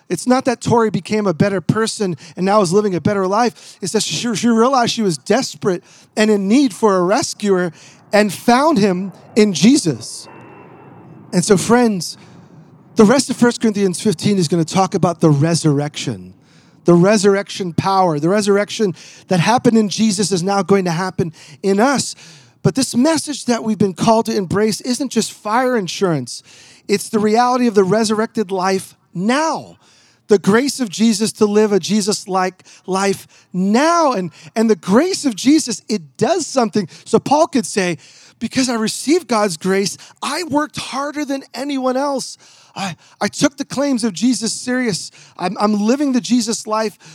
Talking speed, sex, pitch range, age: 170 wpm, male, 185-235 Hz, 40-59